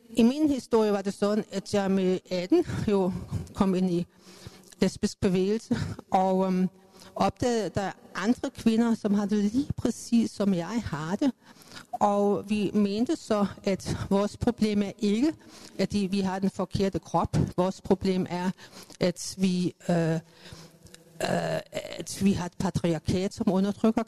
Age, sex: 50-69, female